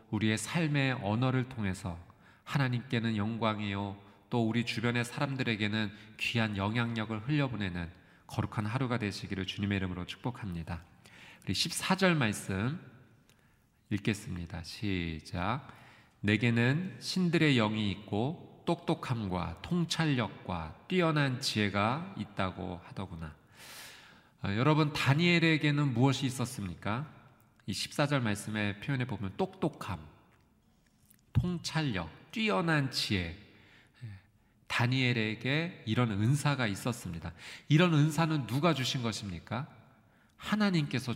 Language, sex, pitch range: Korean, male, 105-145 Hz